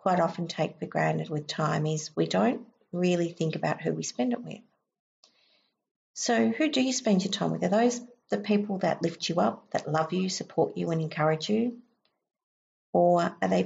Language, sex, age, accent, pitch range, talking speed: English, female, 50-69, Australian, 155-200 Hz, 200 wpm